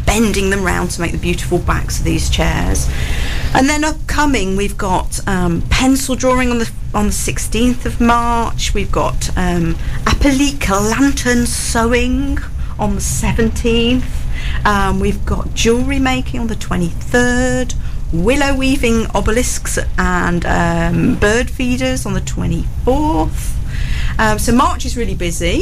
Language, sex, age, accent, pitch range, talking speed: English, female, 40-59, British, 170-255 Hz, 135 wpm